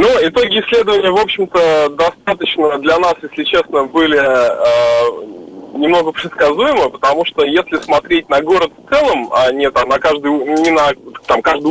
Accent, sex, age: native, male, 20-39